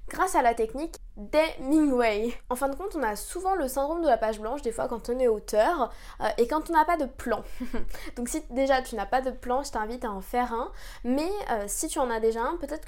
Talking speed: 260 wpm